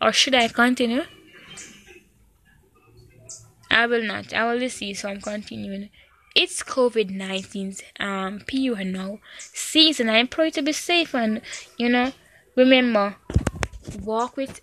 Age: 10-29